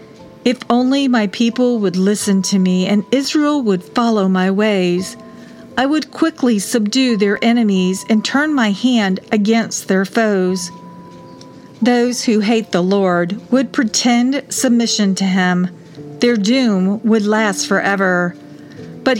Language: English